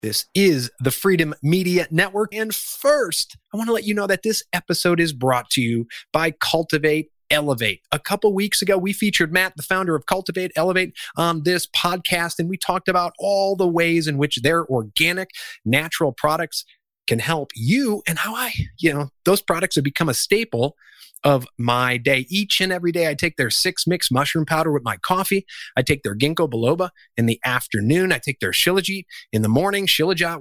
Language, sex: English, male